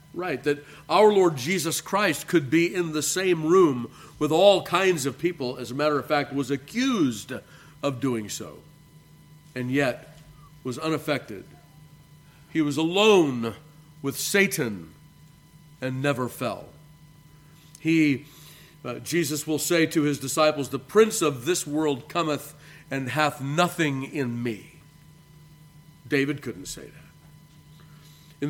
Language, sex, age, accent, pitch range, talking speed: English, male, 50-69, American, 140-165 Hz, 135 wpm